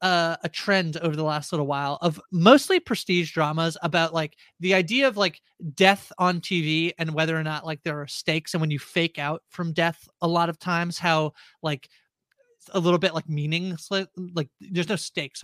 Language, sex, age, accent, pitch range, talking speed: English, male, 30-49, American, 165-205 Hz, 200 wpm